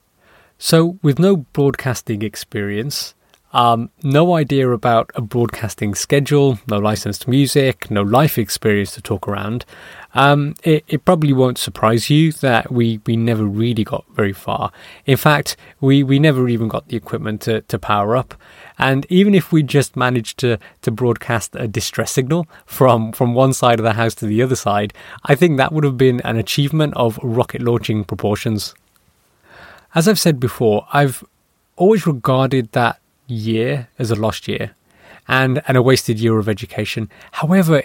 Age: 20-39